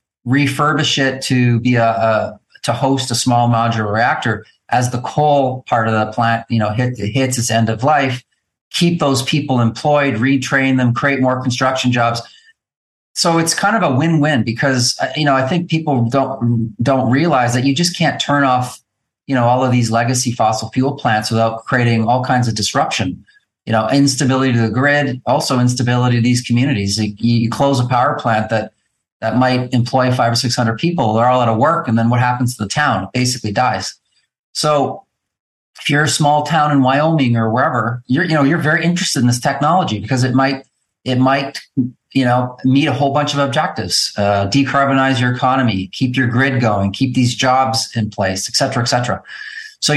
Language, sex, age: English, male, 40-59